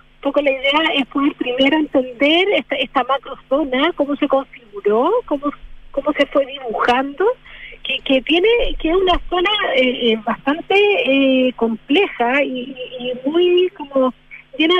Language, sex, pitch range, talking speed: Spanish, female, 230-285 Hz, 140 wpm